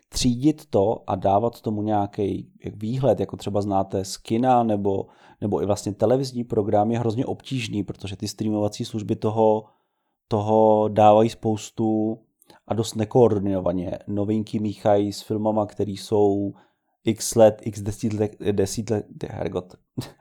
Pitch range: 105-120 Hz